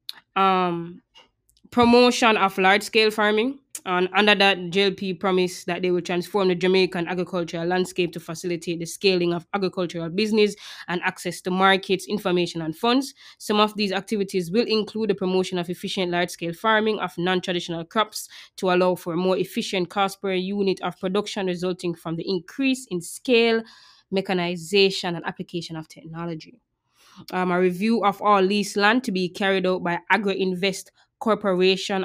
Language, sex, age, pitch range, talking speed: English, female, 20-39, 180-200 Hz, 155 wpm